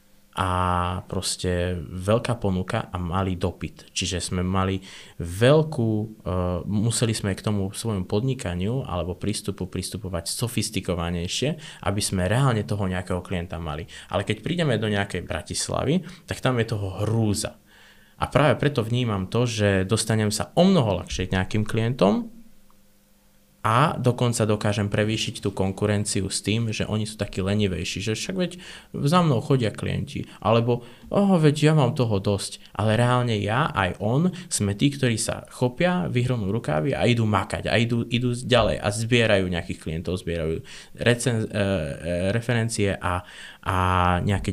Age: 20-39